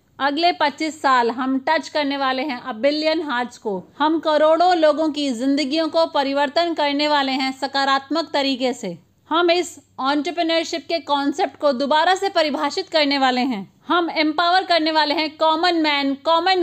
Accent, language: native, Hindi